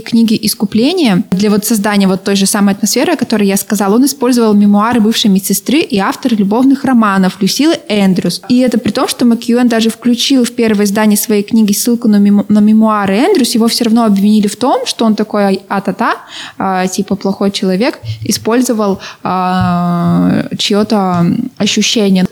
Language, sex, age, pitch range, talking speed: Russian, female, 20-39, 205-245 Hz, 160 wpm